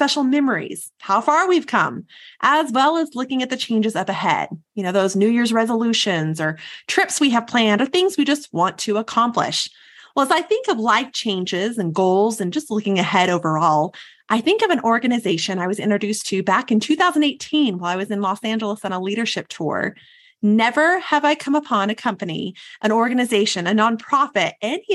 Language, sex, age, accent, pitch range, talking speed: English, female, 30-49, American, 195-285 Hz, 195 wpm